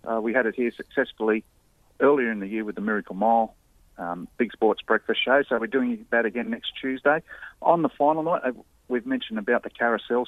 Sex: male